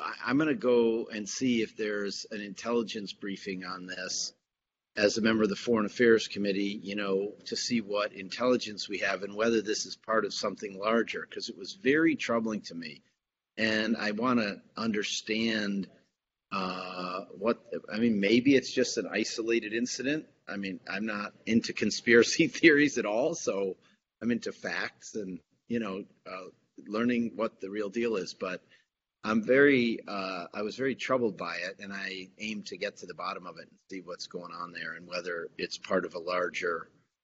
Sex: male